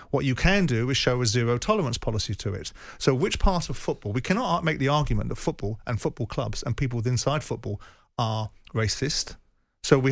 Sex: male